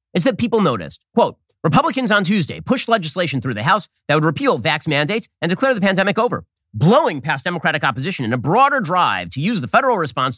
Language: English